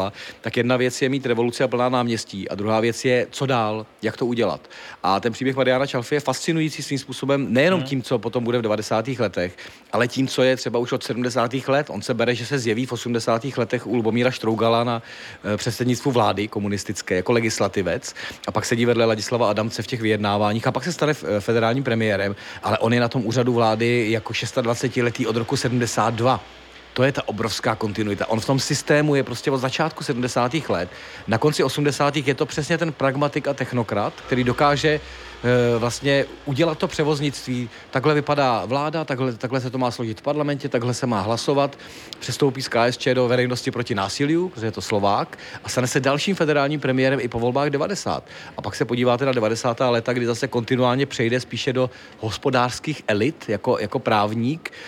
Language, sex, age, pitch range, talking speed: Czech, male, 40-59, 115-140 Hz, 190 wpm